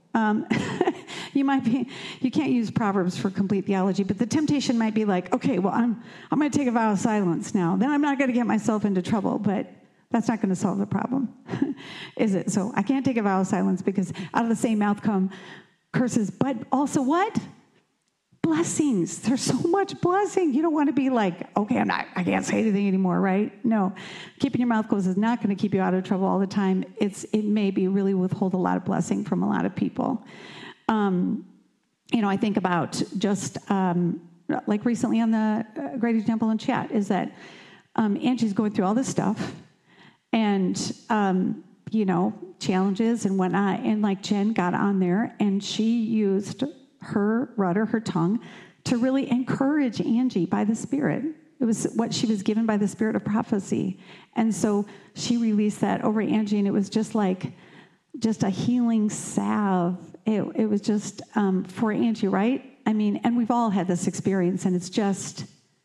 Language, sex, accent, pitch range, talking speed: English, female, American, 195-240 Hz, 200 wpm